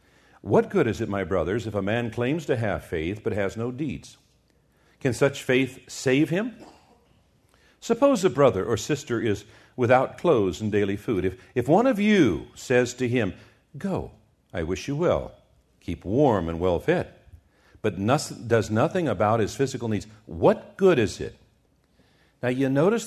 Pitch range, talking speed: 115-155 Hz, 170 wpm